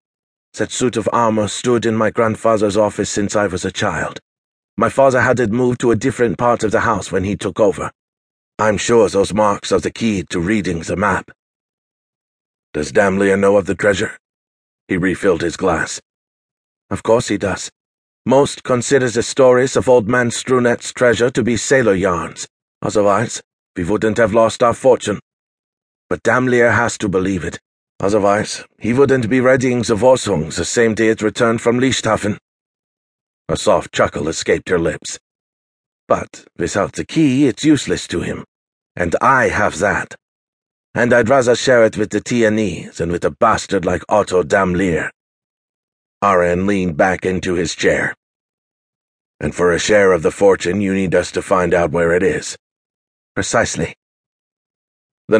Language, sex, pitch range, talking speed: English, male, 100-125 Hz, 165 wpm